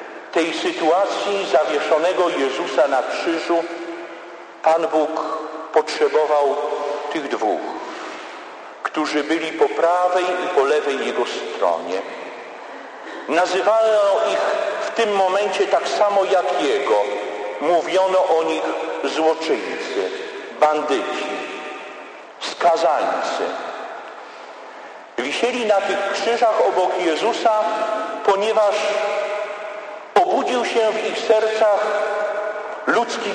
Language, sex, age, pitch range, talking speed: Polish, male, 50-69, 170-210 Hz, 90 wpm